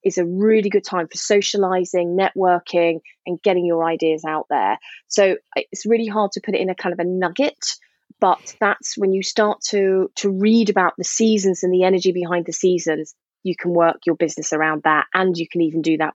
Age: 20-39